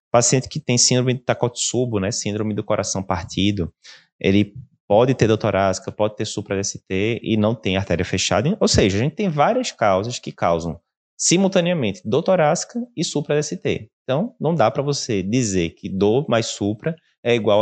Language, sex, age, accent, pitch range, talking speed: Portuguese, male, 20-39, Brazilian, 100-145 Hz, 170 wpm